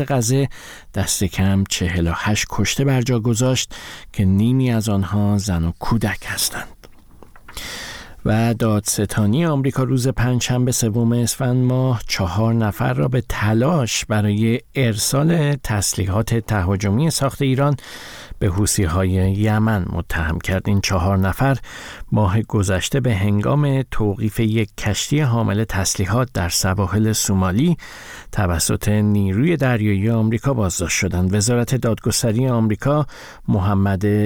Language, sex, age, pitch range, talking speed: Persian, male, 50-69, 100-120 Hz, 110 wpm